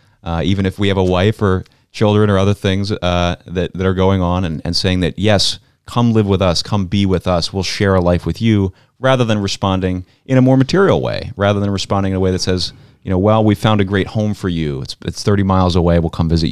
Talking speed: 260 wpm